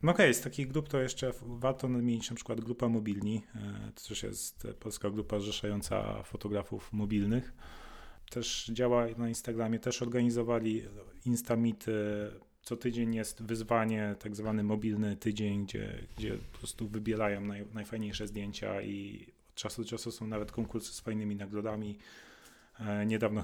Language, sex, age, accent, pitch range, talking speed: Polish, male, 30-49, native, 105-115 Hz, 145 wpm